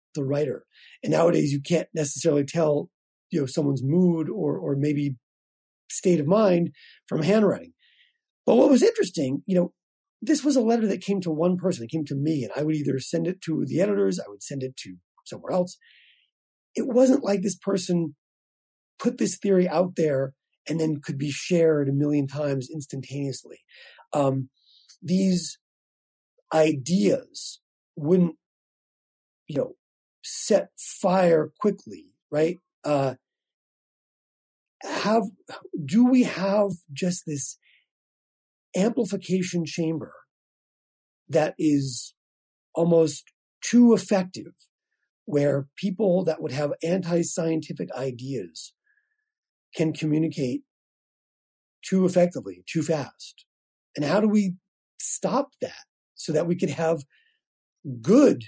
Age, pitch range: 40-59, 145-195 Hz